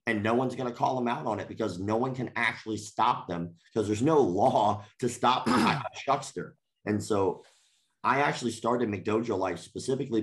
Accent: American